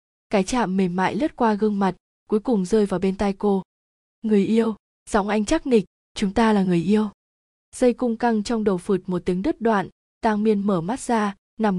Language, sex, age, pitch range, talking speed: Vietnamese, female, 20-39, 190-225 Hz, 215 wpm